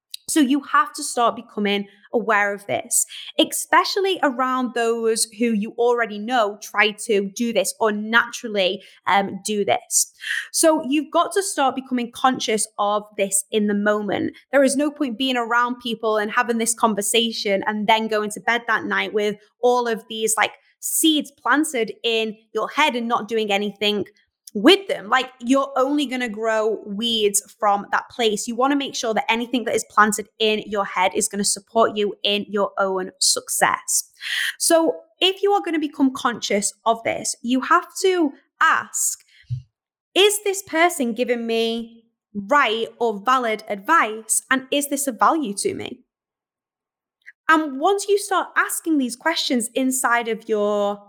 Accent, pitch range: British, 210-290 Hz